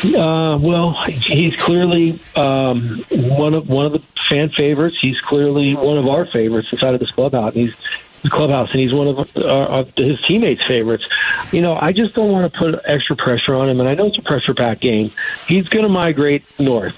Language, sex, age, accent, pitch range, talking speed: English, male, 40-59, American, 130-160 Hz, 210 wpm